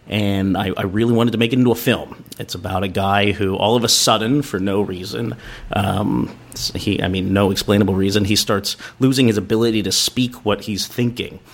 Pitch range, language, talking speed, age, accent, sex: 95-120 Hz, English, 210 wpm, 30-49, American, male